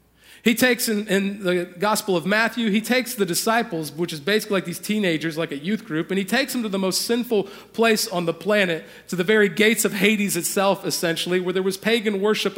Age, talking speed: 40-59, 225 wpm